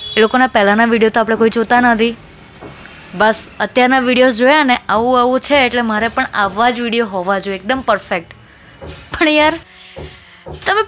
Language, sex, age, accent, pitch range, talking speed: Gujarati, female, 20-39, native, 215-275 Hz, 165 wpm